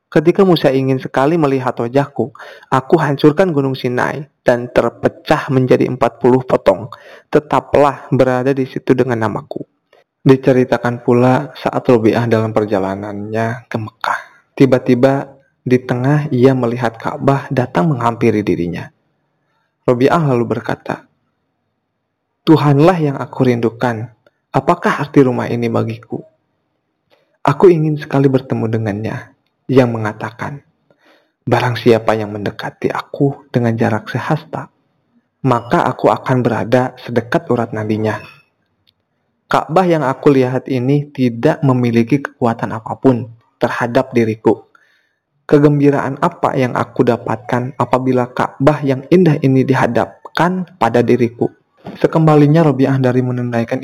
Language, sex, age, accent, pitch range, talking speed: Indonesian, male, 20-39, native, 120-140 Hz, 110 wpm